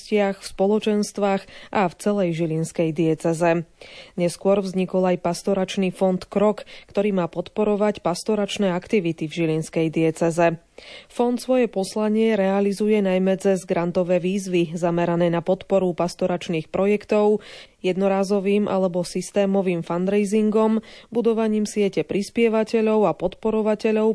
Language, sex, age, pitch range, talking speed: Slovak, female, 30-49, 175-210 Hz, 105 wpm